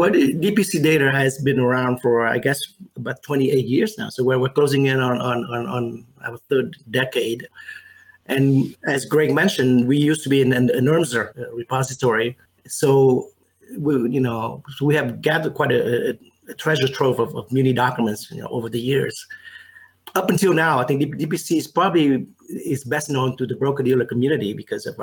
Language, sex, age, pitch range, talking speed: English, male, 30-49, 120-145 Hz, 185 wpm